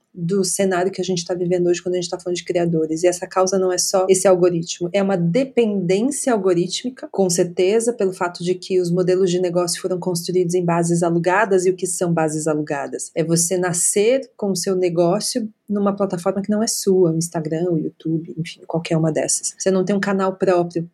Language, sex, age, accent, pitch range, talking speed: Portuguese, female, 30-49, Brazilian, 180-205 Hz, 210 wpm